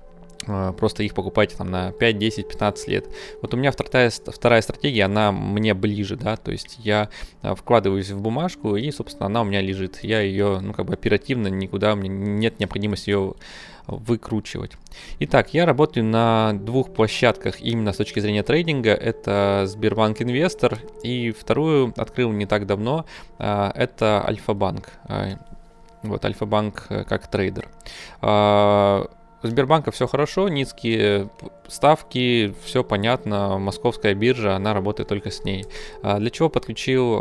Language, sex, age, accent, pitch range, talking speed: Russian, male, 20-39, native, 105-125 Hz, 140 wpm